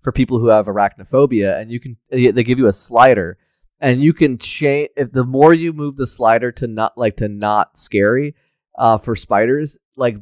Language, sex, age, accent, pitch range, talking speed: English, male, 20-39, American, 105-125 Hz, 200 wpm